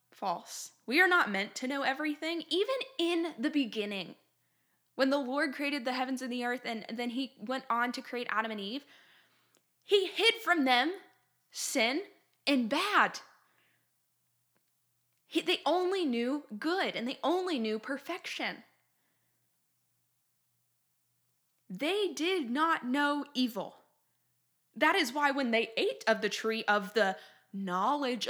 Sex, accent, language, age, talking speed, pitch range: female, American, English, 10-29, 135 wpm, 215-315 Hz